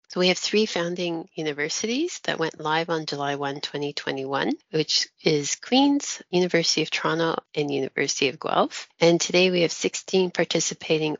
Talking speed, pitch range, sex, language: 155 wpm, 145-180 Hz, female, English